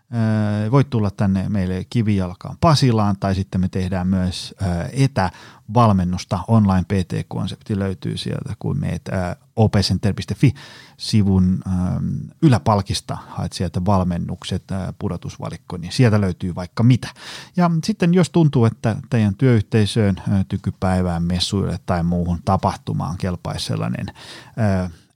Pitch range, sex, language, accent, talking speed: 95-125 Hz, male, Finnish, native, 105 wpm